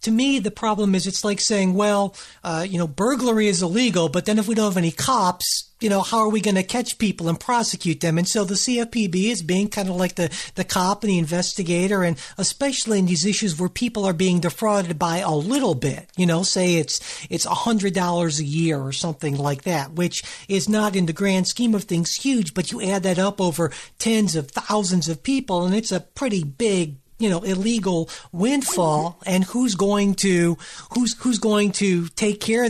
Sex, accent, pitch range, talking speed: male, American, 165-210 Hz, 215 wpm